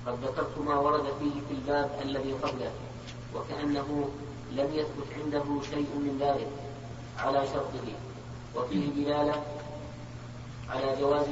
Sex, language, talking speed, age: female, Arabic, 115 wpm, 30-49